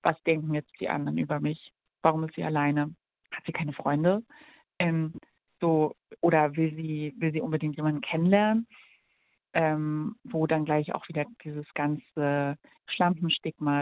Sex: female